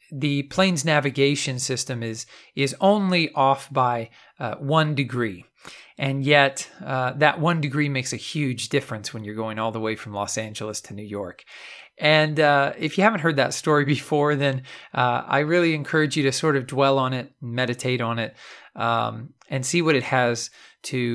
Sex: male